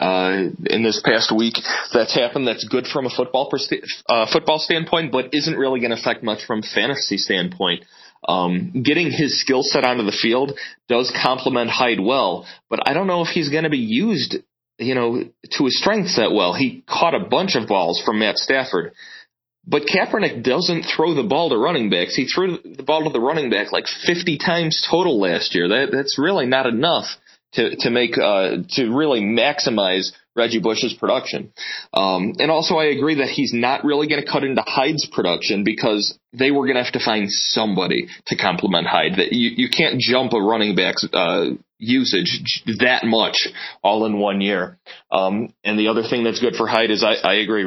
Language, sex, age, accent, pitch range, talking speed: English, male, 30-49, American, 110-150 Hz, 200 wpm